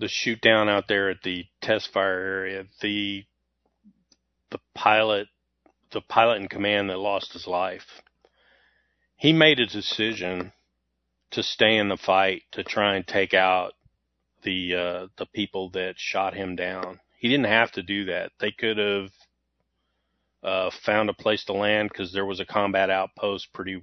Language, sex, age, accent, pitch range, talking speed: English, male, 40-59, American, 90-100 Hz, 165 wpm